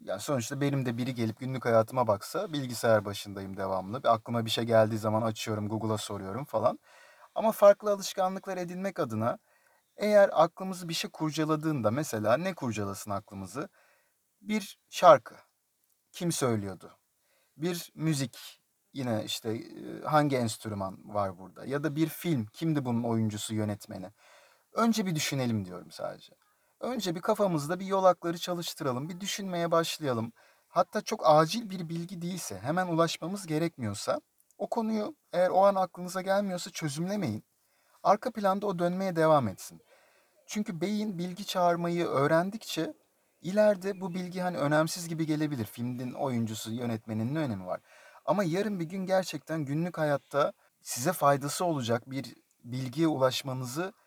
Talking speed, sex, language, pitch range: 135 wpm, male, Turkish, 115-185 Hz